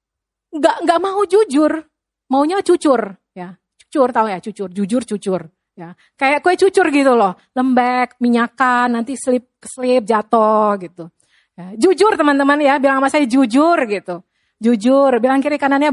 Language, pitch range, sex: Indonesian, 240-355 Hz, female